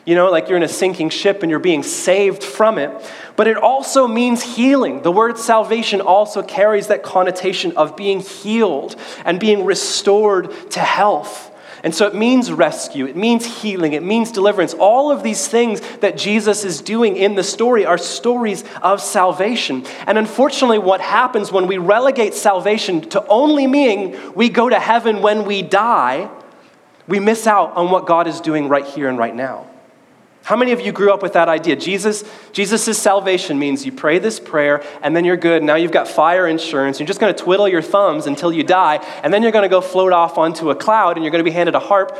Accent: American